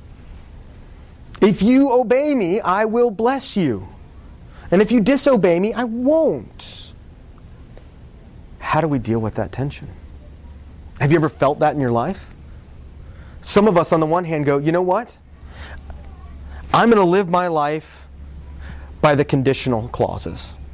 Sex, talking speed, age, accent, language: male, 150 wpm, 30-49, American, English